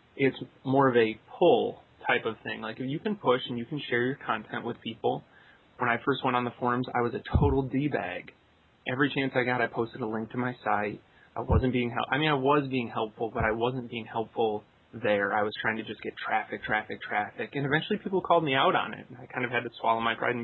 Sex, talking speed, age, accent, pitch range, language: male, 255 wpm, 30-49, American, 110-135 Hz, English